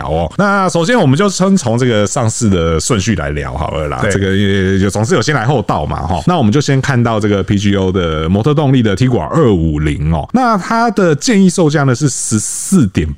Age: 30-49